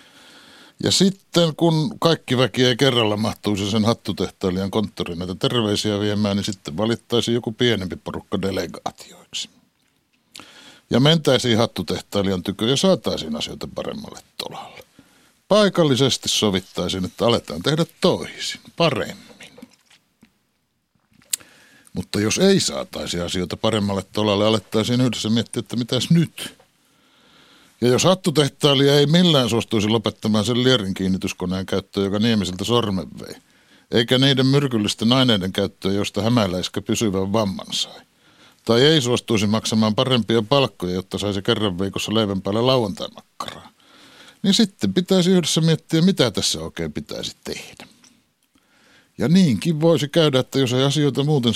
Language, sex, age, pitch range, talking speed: Finnish, male, 60-79, 100-145 Hz, 125 wpm